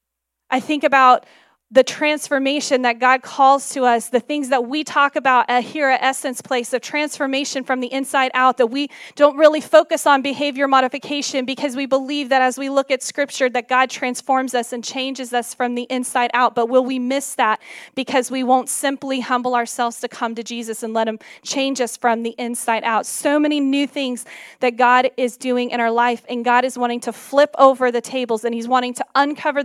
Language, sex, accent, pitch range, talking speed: English, female, American, 245-280 Hz, 205 wpm